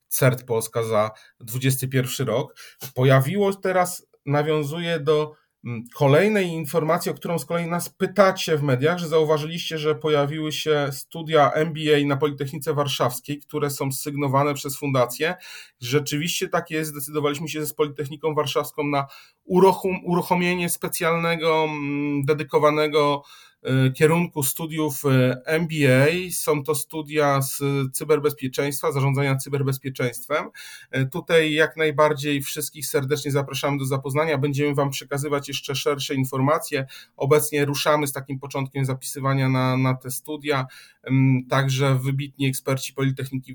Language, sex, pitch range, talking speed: Polish, male, 135-155 Hz, 115 wpm